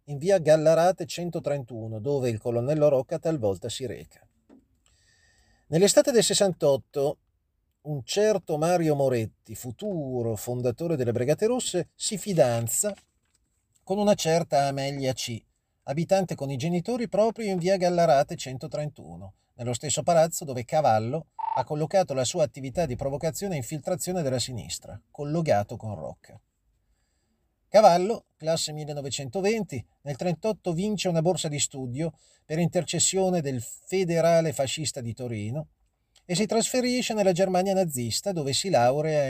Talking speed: 130 wpm